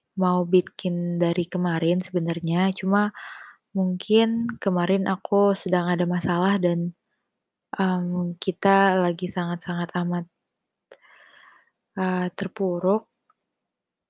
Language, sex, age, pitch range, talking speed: Indonesian, female, 20-39, 180-200 Hz, 85 wpm